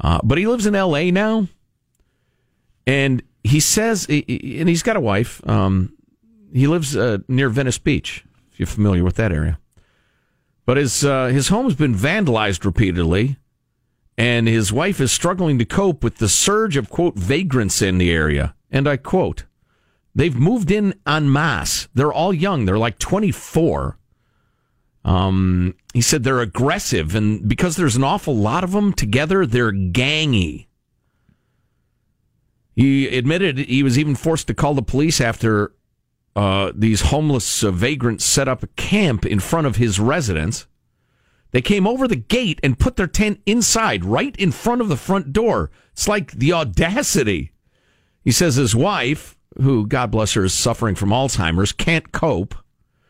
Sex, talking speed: male, 160 wpm